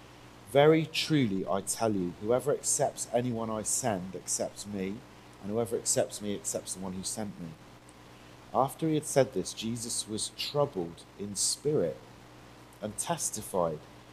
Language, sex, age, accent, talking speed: English, male, 40-59, British, 145 wpm